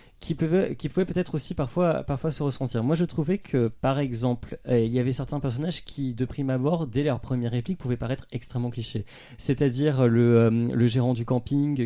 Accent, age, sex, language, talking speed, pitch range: French, 30-49, male, French, 205 wpm, 120-160 Hz